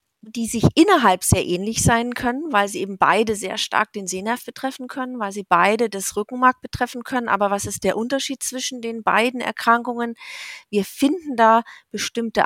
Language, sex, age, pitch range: German, female, 40-59, 185-235 Hz